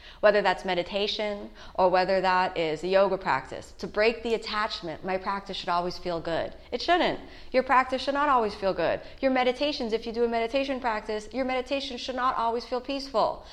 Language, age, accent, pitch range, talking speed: English, 30-49, American, 190-245 Hz, 195 wpm